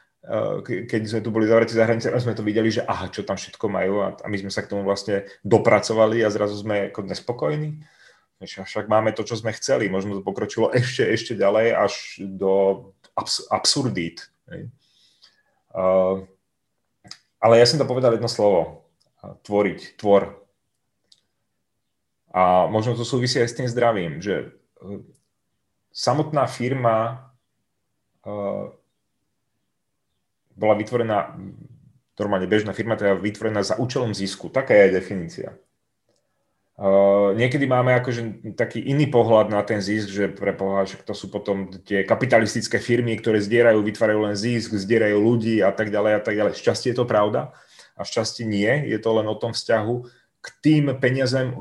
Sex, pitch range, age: male, 100-120 Hz, 30-49